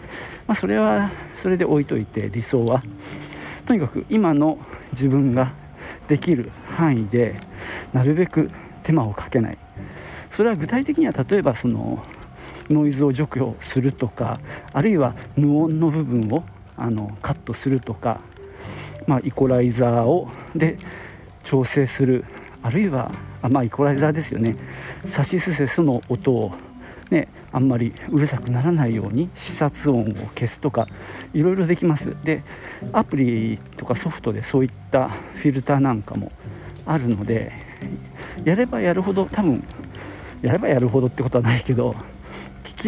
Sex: male